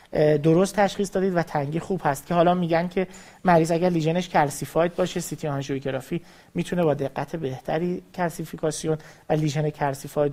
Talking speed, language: 150 wpm, Persian